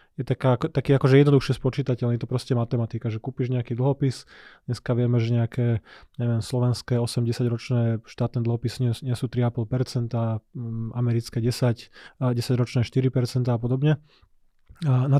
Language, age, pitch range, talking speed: Slovak, 20-39, 120-130 Hz, 140 wpm